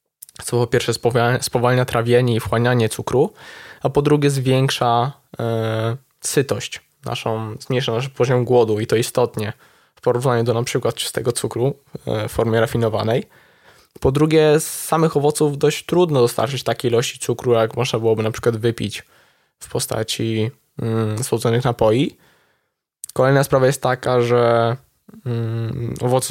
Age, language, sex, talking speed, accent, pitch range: 20-39, Polish, male, 130 wpm, native, 115-135 Hz